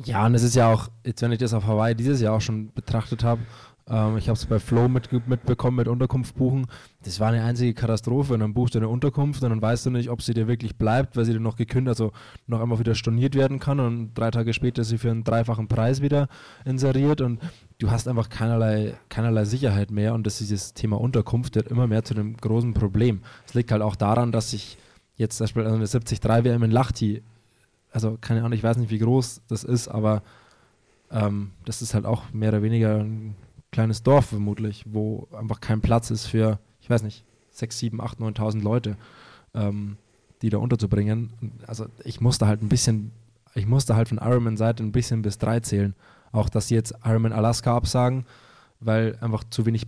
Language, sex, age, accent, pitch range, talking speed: German, male, 20-39, German, 110-120 Hz, 210 wpm